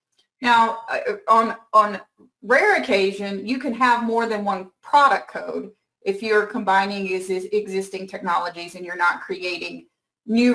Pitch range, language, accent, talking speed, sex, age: 200-250 Hz, English, American, 130 wpm, female, 40-59